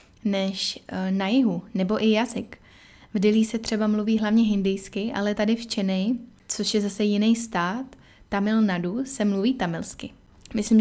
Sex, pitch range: female, 195-230 Hz